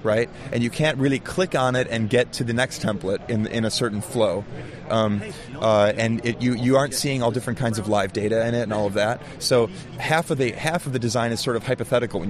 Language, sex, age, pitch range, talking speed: English, male, 30-49, 110-135 Hz, 250 wpm